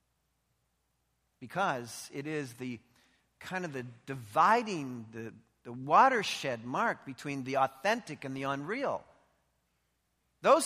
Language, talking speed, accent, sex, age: English, 105 wpm, American, male, 40-59